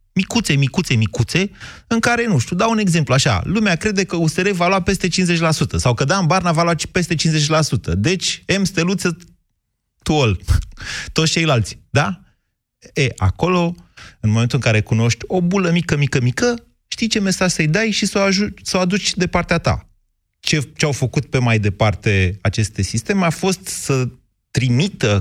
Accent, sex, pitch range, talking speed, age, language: native, male, 105-160 Hz, 175 wpm, 30-49, Romanian